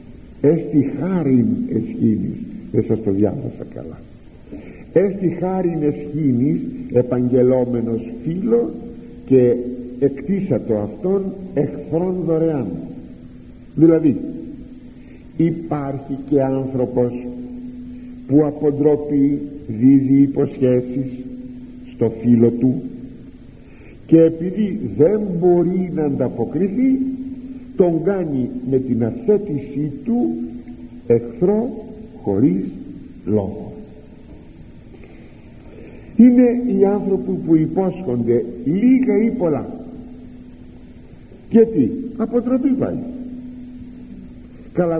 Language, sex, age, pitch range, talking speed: Greek, male, 60-79, 125-215 Hz, 75 wpm